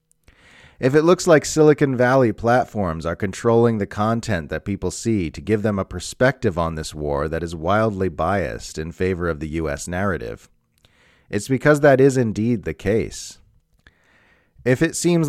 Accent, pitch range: American, 80-105 Hz